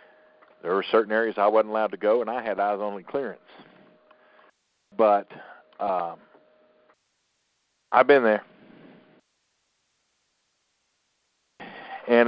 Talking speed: 100 wpm